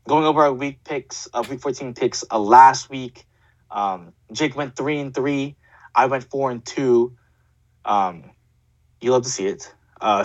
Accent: American